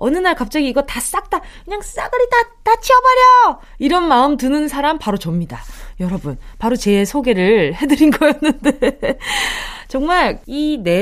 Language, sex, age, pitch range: Korean, female, 20-39, 205-300 Hz